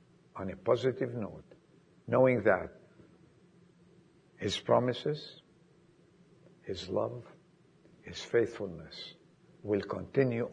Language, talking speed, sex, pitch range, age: English, 80 wpm, male, 125-170 Hz, 60-79